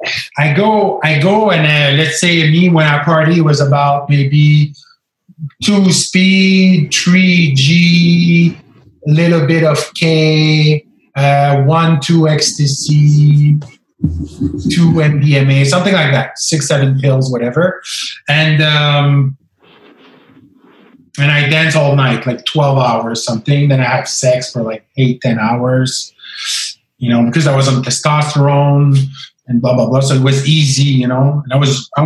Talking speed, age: 145 wpm, 30-49